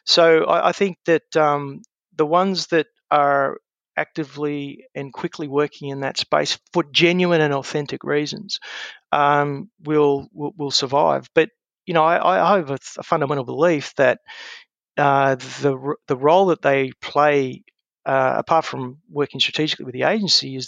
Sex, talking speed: male, 150 wpm